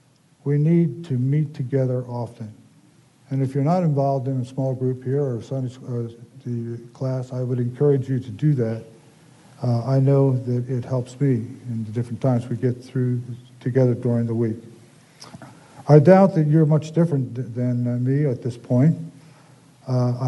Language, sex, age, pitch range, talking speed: English, male, 50-69, 125-145 Hz, 165 wpm